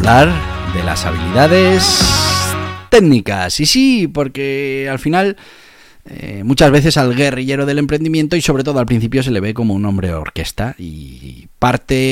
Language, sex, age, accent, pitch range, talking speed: Spanish, male, 30-49, Spanish, 90-125 Hz, 160 wpm